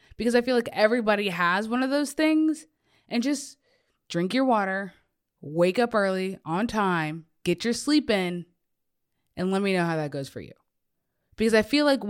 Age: 20-39